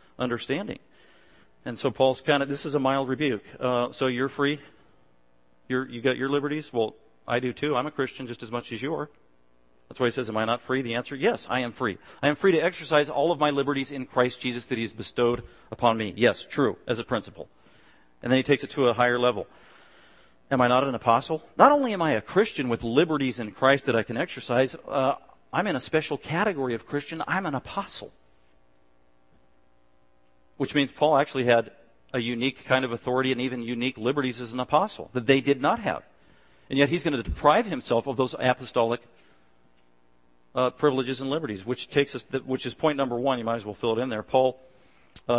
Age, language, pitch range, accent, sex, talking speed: 40-59, English, 105-135 Hz, American, male, 215 wpm